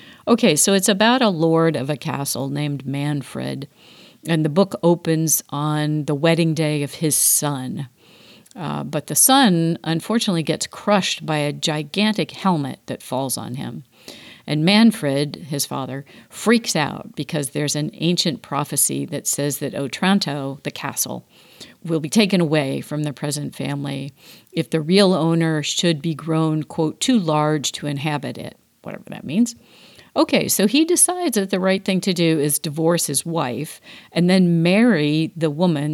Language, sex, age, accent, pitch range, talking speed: English, female, 50-69, American, 145-180 Hz, 160 wpm